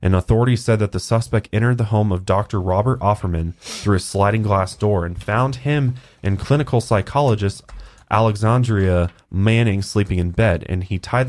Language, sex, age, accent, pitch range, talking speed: English, male, 20-39, American, 90-105 Hz, 170 wpm